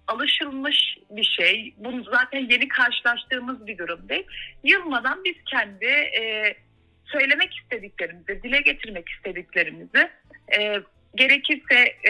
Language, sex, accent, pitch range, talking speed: Turkish, female, native, 200-280 Hz, 95 wpm